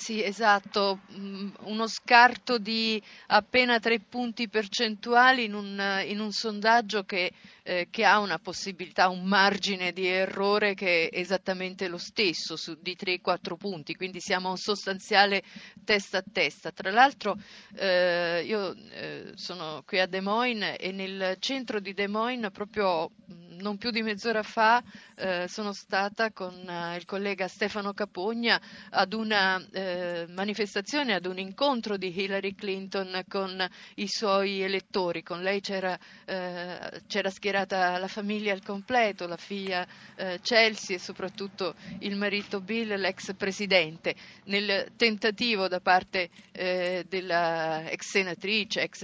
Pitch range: 185-210 Hz